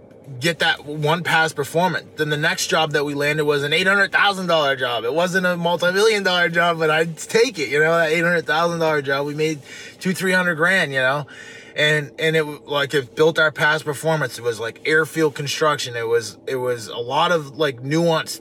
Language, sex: English, male